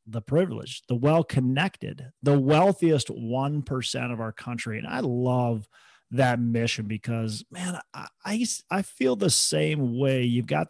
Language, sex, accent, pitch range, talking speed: English, male, American, 120-150 Hz, 140 wpm